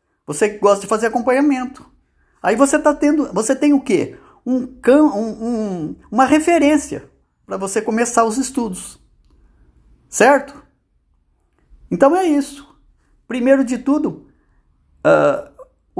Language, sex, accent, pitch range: Portuguese, male, Brazilian, 215-275 Hz